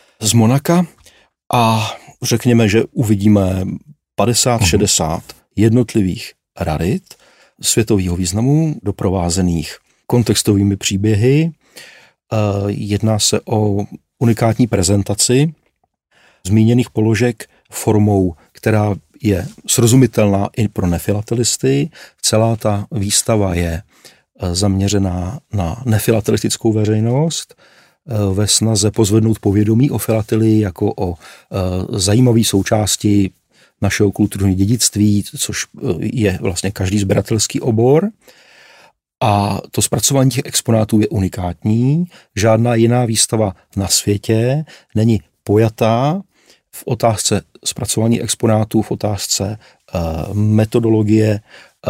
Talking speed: 90 wpm